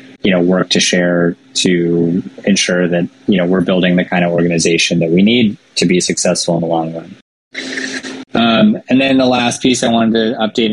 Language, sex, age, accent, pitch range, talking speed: English, male, 20-39, American, 90-110 Hz, 200 wpm